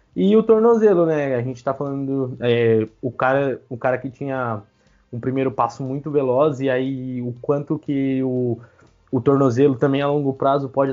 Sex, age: male, 20-39